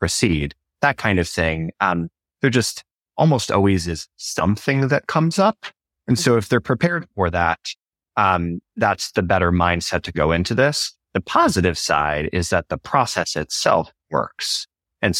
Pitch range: 85-105 Hz